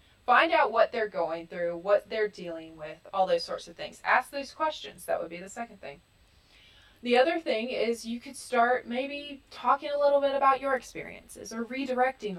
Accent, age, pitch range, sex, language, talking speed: American, 20-39, 175-235 Hz, female, English, 200 wpm